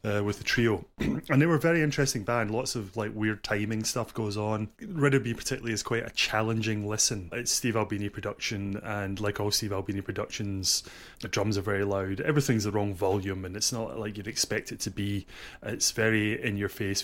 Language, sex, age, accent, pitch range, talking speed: English, male, 30-49, British, 100-125 Hz, 210 wpm